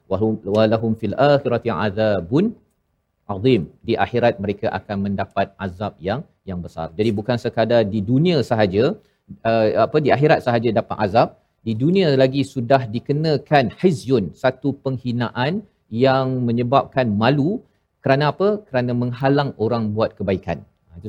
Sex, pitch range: male, 110-140 Hz